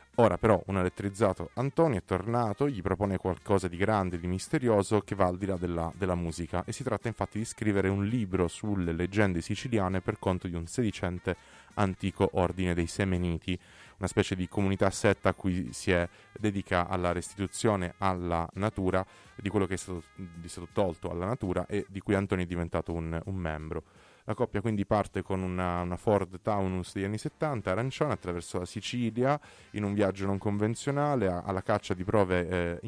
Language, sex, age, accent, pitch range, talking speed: Italian, male, 30-49, native, 90-110 Hz, 185 wpm